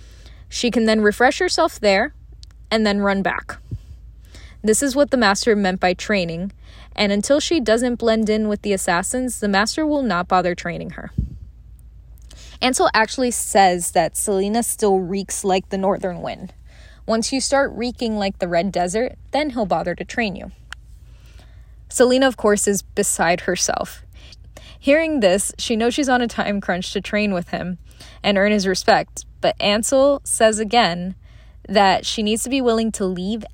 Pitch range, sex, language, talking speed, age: 180-230 Hz, female, English, 170 wpm, 10-29